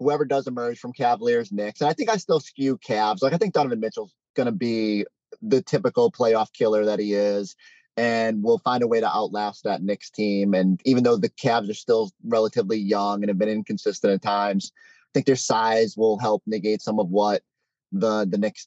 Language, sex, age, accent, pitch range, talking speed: English, male, 30-49, American, 110-140 Hz, 210 wpm